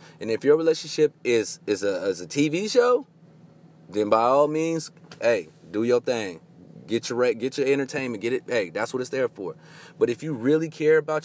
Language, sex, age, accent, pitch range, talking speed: English, male, 30-49, American, 115-160 Hz, 205 wpm